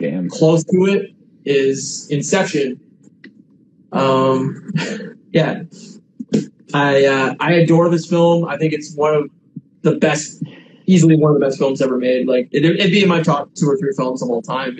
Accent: American